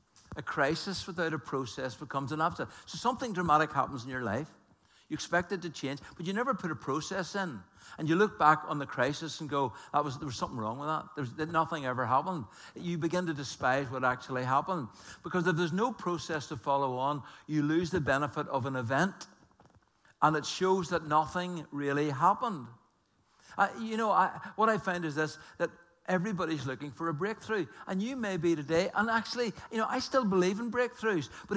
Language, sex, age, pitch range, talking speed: English, male, 60-79, 130-180 Hz, 205 wpm